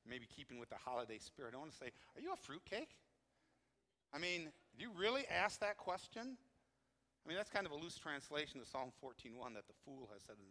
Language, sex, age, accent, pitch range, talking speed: English, male, 50-69, American, 110-140 Hz, 225 wpm